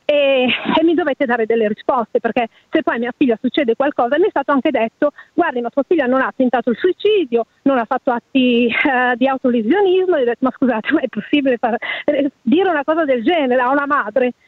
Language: Italian